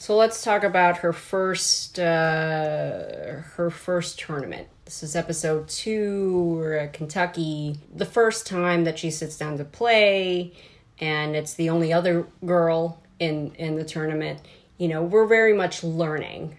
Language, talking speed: English, 150 wpm